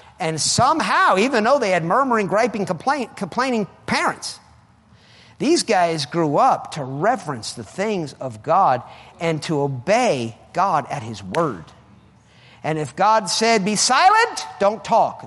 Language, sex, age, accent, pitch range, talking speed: English, male, 50-69, American, 165-270 Hz, 140 wpm